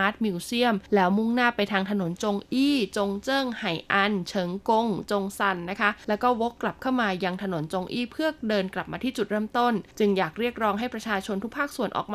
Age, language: 20-39, Thai